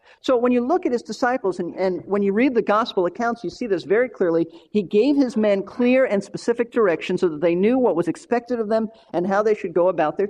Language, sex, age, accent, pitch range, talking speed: English, male, 50-69, American, 170-240 Hz, 255 wpm